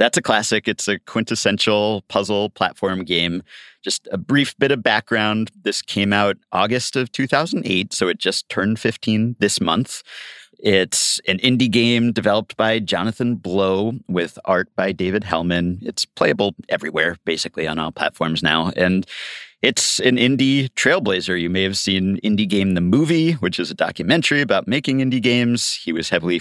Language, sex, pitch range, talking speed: English, male, 90-120 Hz, 165 wpm